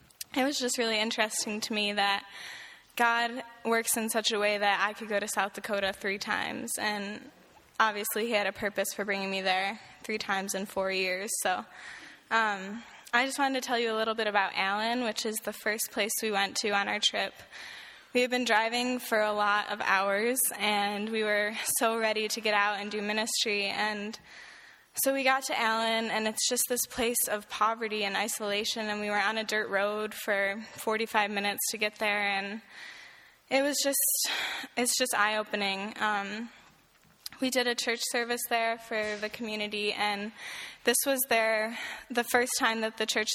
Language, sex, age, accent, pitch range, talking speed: English, female, 10-29, American, 205-230 Hz, 190 wpm